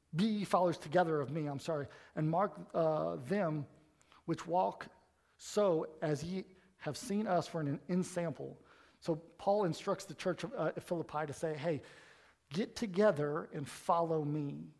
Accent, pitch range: American, 155-195 Hz